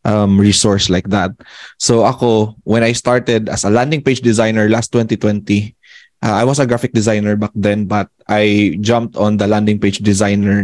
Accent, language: native, Filipino